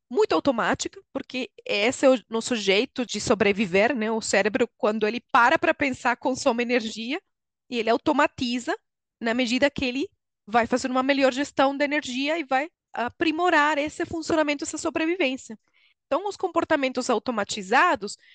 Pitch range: 225-315 Hz